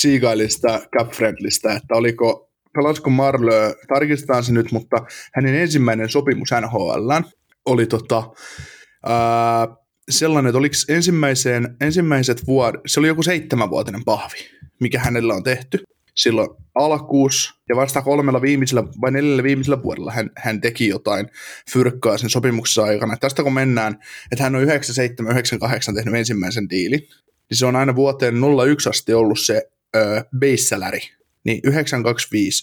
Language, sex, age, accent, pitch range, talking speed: Finnish, male, 20-39, native, 115-135 Hz, 135 wpm